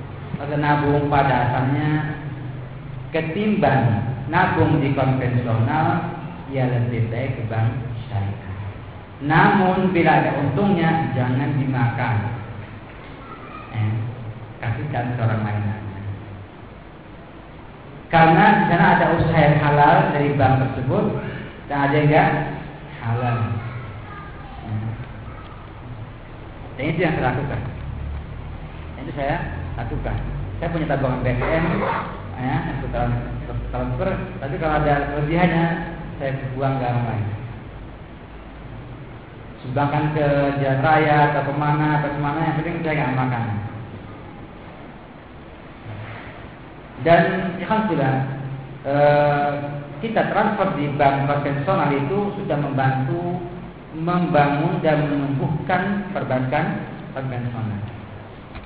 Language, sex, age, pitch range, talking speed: Malay, male, 50-69, 115-150 Hz, 90 wpm